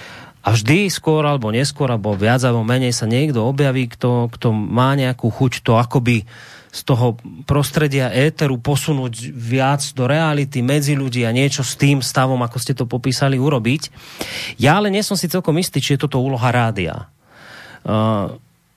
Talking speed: 165 wpm